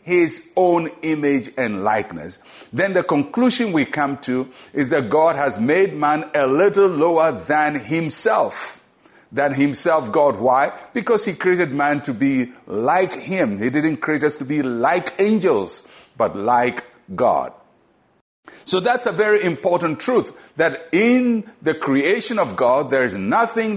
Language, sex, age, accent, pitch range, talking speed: English, male, 60-79, Nigerian, 140-185 Hz, 150 wpm